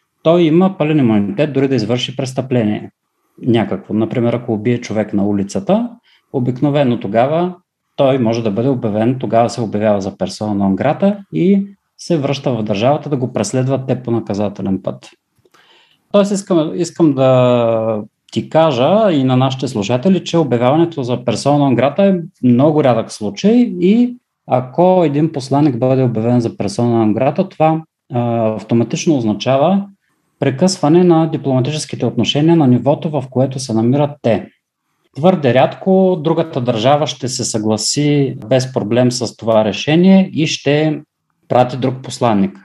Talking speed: 140 wpm